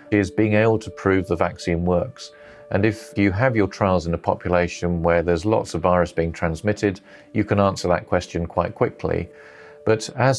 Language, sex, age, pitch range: English, male, 40-59, 85-105 Hz